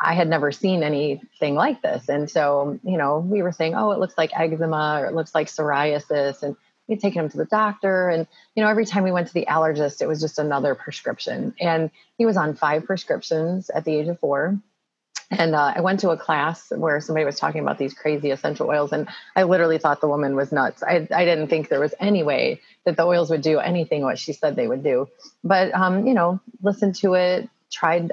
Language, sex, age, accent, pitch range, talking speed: English, female, 30-49, American, 155-190 Hz, 235 wpm